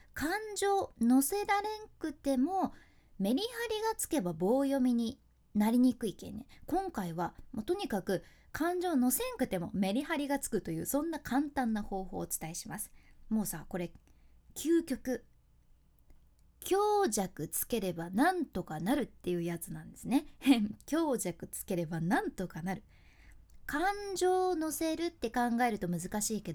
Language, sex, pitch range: Japanese, female, 185-300 Hz